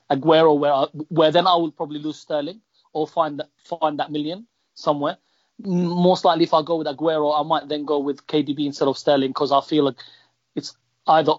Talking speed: 205 wpm